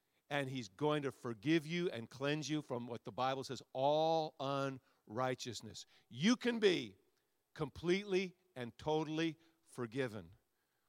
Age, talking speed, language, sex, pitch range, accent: 50-69, 125 wpm, English, male, 130-185 Hz, American